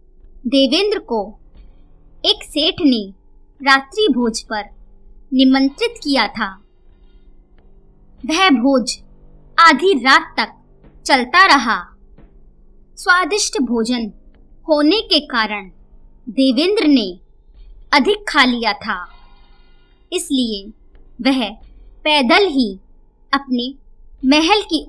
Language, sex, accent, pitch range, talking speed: Hindi, male, native, 215-315 Hz, 85 wpm